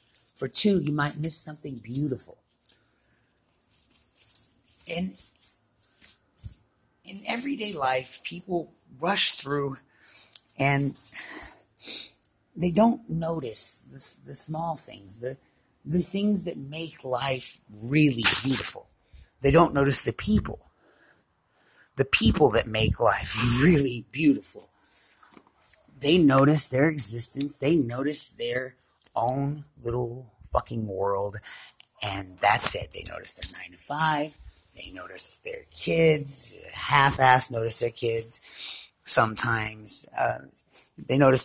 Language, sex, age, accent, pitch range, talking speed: English, male, 40-59, American, 115-155 Hz, 110 wpm